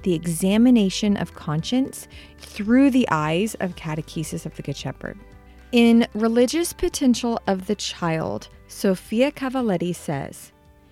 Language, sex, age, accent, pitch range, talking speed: English, female, 30-49, American, 170-220 Hz, 120 wpm